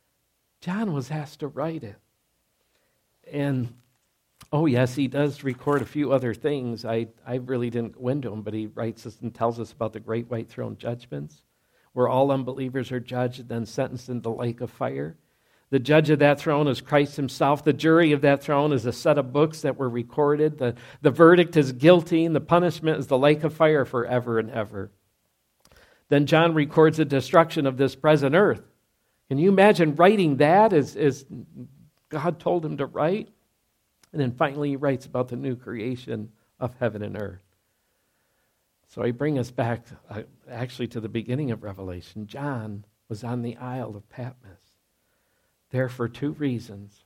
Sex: male